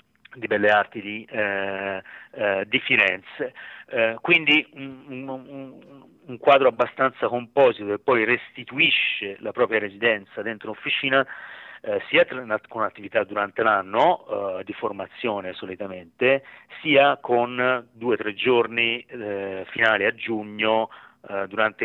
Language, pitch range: Italian, 100-130 Hz